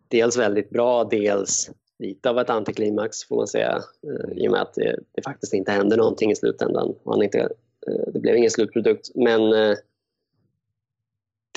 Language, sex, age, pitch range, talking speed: Swedish, male, 20-39, 110-140 Hz, 175 wpm